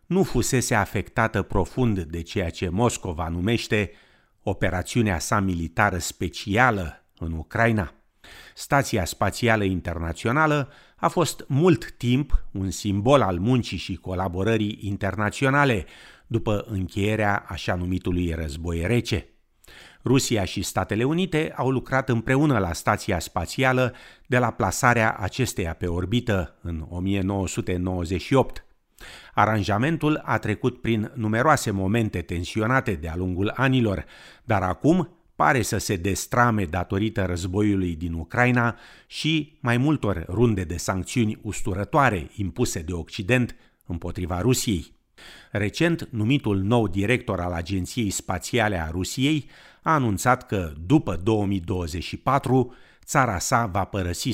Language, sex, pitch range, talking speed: Romanian, male, 90-120 Hz, 115 wpm